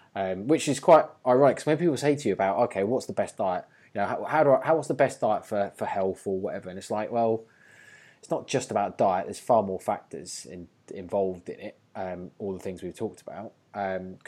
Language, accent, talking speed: English, British, 245 wpm